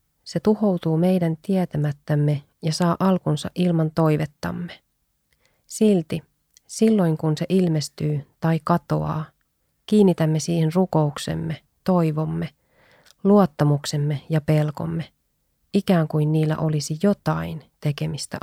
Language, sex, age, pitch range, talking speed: Finnish, female, 30-49, 150-175 Hz, 95 wpm